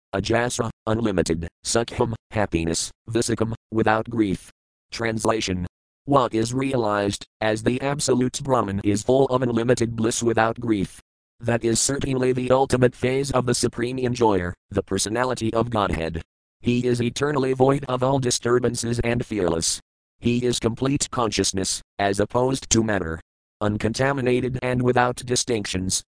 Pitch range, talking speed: 105-120 Hz, 130 wpm